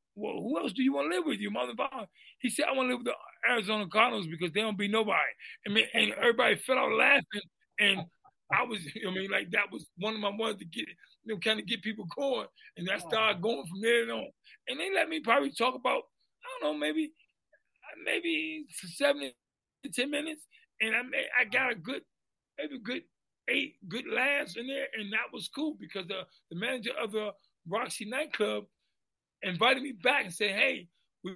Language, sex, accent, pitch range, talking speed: English, male, American, 205-265 Hz, 205 wpm